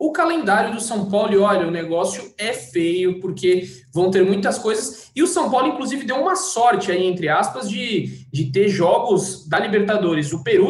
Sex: male